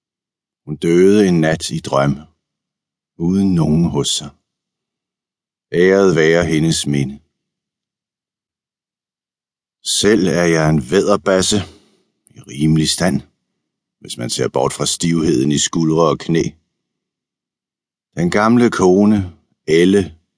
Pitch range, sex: 75-95 Hz, male